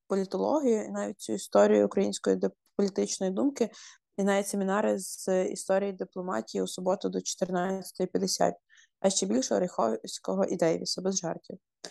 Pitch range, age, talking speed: 180-210 Hz, 20-39, 130 wpm